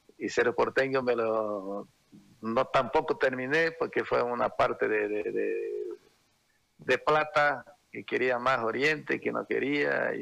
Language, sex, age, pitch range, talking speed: Spanish, male, 50-69, 115-150 Hz, 145 wpm